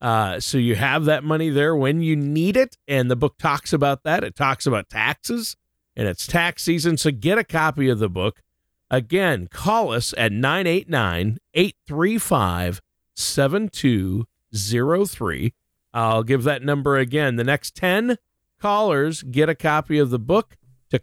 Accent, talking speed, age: American, 150 wpm, 40-59